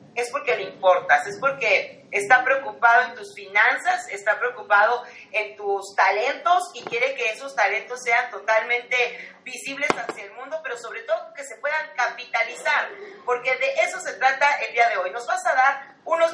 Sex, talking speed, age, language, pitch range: female, 175 wpm, 40-59, Spanish, 210-275 Hz